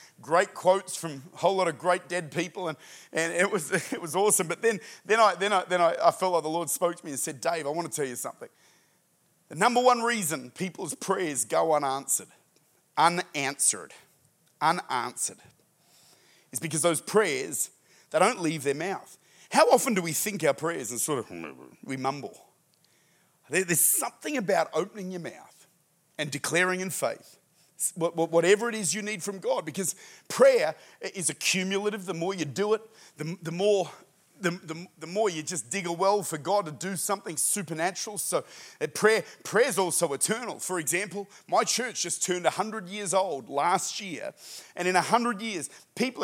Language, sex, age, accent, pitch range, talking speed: English, male, 40-59, Australian, 165-205 Hz, 180 wpm